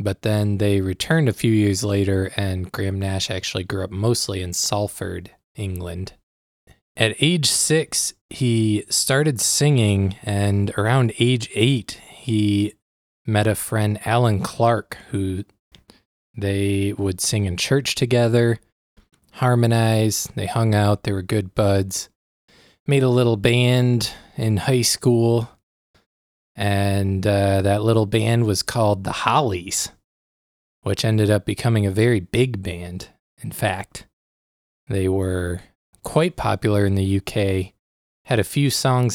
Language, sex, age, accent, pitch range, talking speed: English, male, 20-39, American, 95-115 Hz, 130 wpm